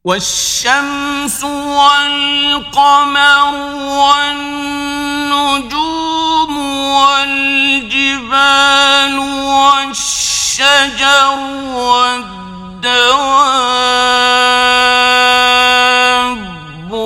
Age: 50-69